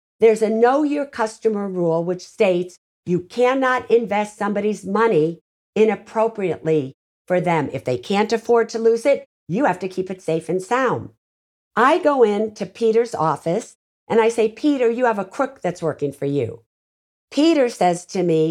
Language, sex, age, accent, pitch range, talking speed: English, female, 50-69, American, 170-230 Hz, 170 wpm